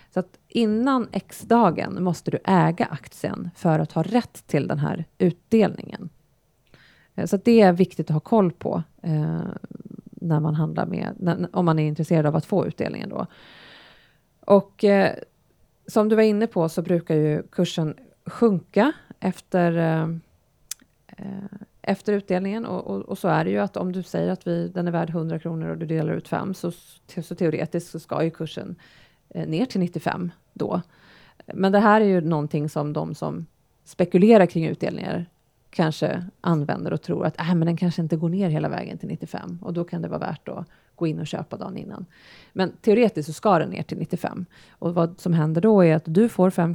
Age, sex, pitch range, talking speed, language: 30-49, female, 160-195 Hz, 195 wpm, Swedish